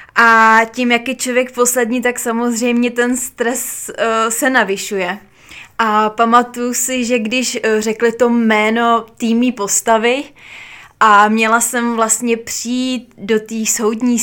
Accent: native